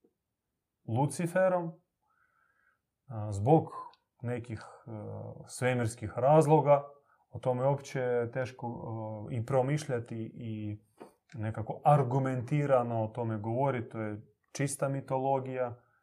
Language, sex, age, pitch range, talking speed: Croatian, male, 30-49, 110-140 Hz, 95 wpm